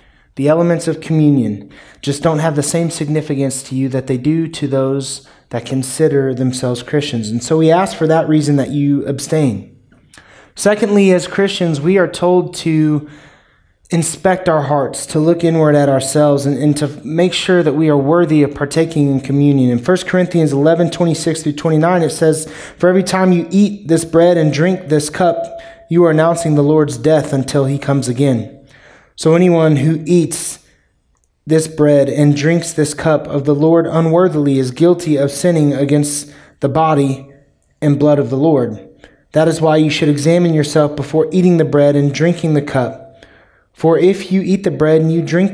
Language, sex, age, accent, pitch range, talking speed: English, male, 20-39, American, 140-165 Hz, 185 wpm